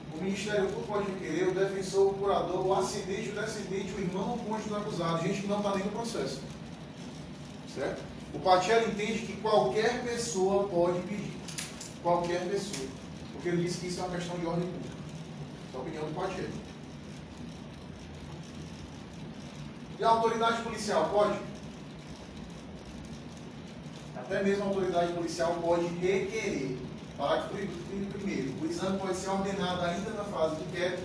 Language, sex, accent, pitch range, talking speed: Portuguese, male, Brazilian, 175-205 Hz, 150 wpm